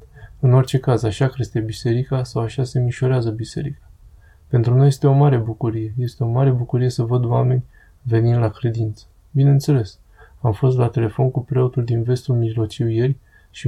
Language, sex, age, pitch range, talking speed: Romanian, male, 20-39, 110-130 Hz, 170 wpm